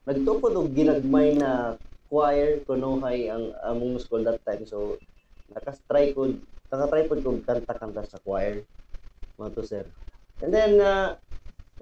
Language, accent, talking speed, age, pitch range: Filipino, native, 110 wpm, 20-39, 115-145 Hz